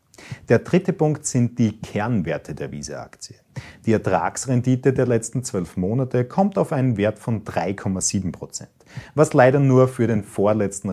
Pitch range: 100-135 Hz